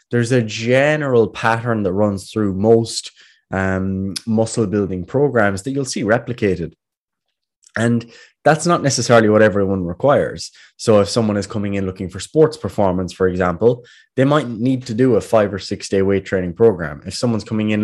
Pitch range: 95-115 Hz